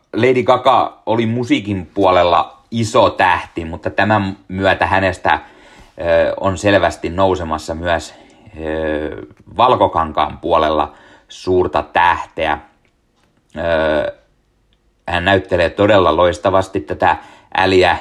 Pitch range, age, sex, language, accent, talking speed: 85-100 Hz, 30-49, male, Finnish, native, 85 wpm